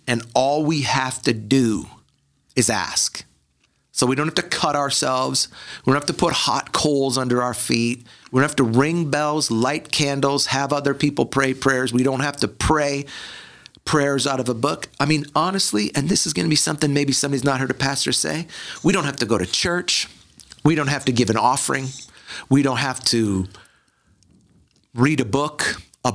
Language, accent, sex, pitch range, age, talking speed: English, American, male, 115-140 Hz, 50-69, 200 wpm